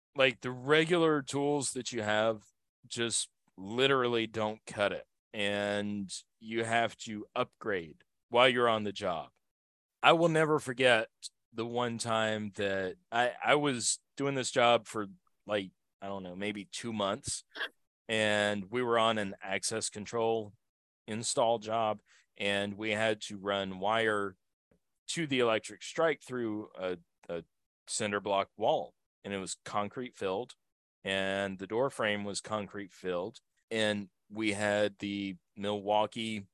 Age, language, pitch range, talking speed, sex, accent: 30-49, English, 100-120 Hz, 140 wpm, male, American